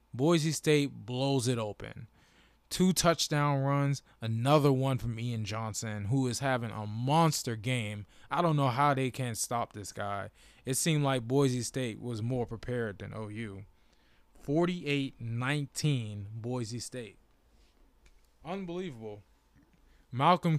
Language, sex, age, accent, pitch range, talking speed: English, male, 20-39, American, 115-150 Hz, 125 wpm